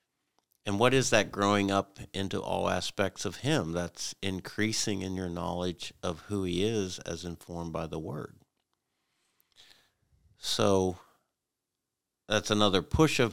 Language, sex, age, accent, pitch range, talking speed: English, male, 50-69, American, 85-105 Hz, 135 wpm